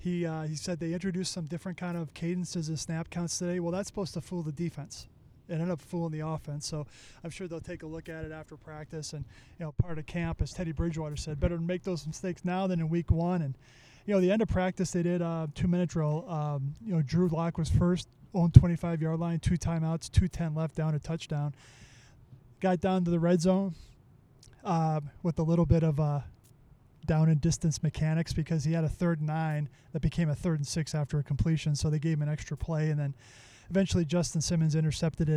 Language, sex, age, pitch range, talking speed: English, male, 20-39, 150-170 Hz, 230 wpm